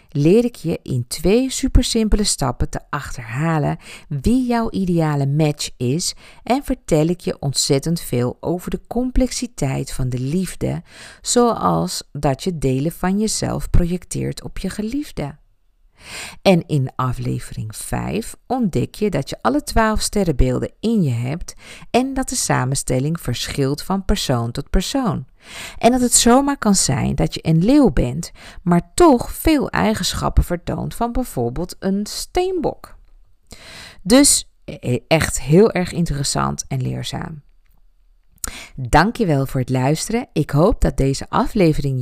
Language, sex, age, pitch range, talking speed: Dutch, female, 50-69, 130-215 Hz, 140 wpm